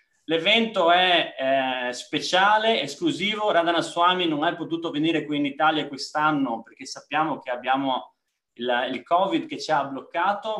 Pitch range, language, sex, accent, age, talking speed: 135-190 Hz, Italian, male, native, 30-49, 145 wpm